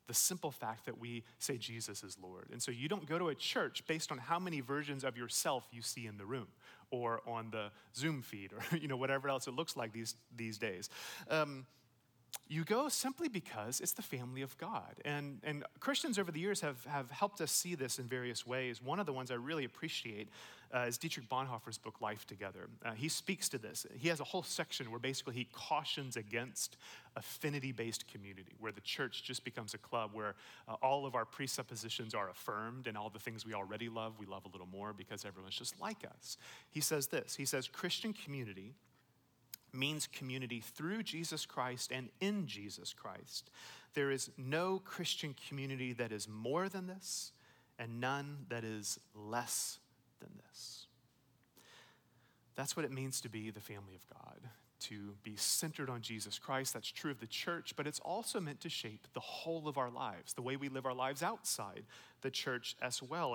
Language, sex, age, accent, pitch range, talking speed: English, male, 30-49, American, 115-150 Hz, 200 wpm